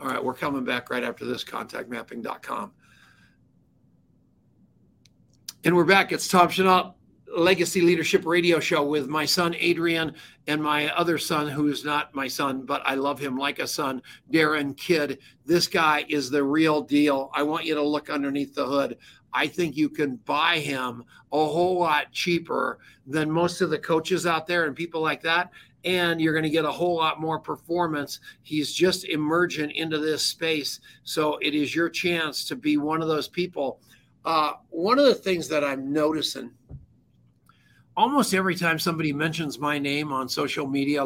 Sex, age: male, 50-69